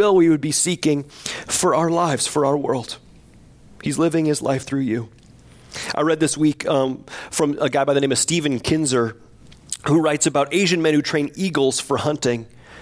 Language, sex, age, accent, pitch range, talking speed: English, male, 30-49, American, 140-175 Hz, 190 wpm